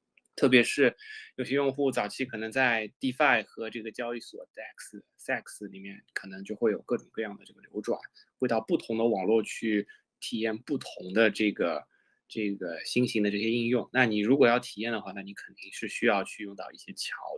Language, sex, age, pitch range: Chinese, male, 20-39, 105-130 Hz